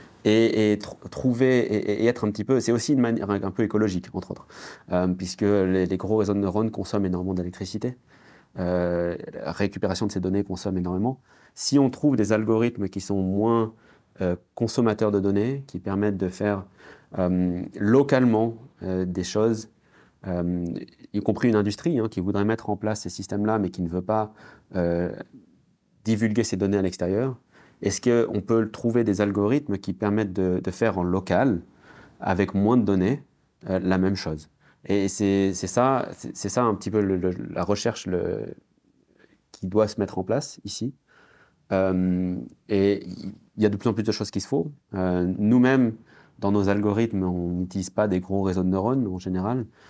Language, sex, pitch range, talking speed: French, male, 95-110 Hz, 185 wpm